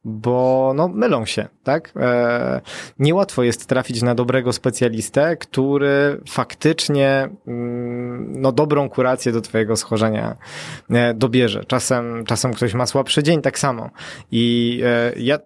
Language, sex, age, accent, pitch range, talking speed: Polish, male, 20-39, native, 120-145 Hz, 115 wpm